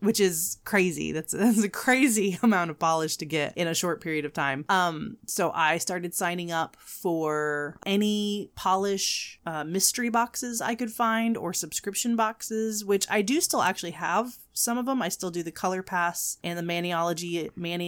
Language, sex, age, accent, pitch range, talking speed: English, female, 30-49, American, 165-215 Hz, 190 wpm